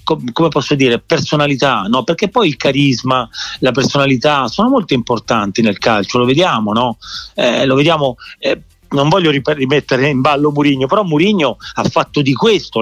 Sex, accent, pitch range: male, native, 125-160 Hz